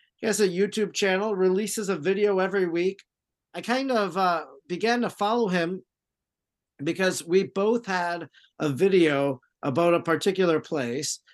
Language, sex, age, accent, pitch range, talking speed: English, male, 50-69, American, 150-185 Hz, 150 wpm